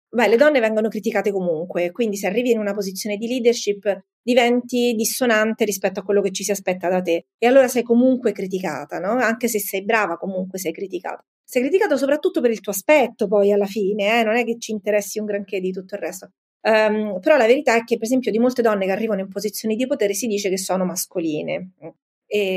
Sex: female